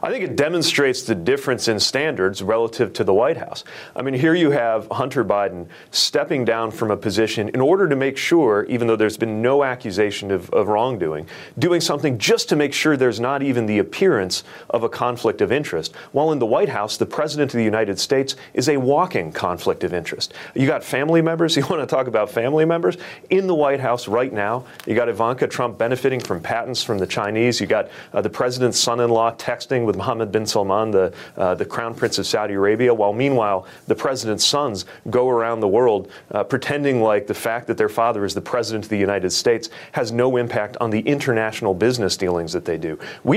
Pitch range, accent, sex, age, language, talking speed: 105-135 Hz, American, male, 30-49, English, 210 wpm